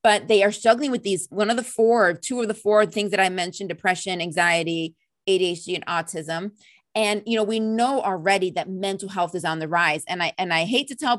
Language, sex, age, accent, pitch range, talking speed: English, female, 30-49, American, 165-210 Hz, 230 wpm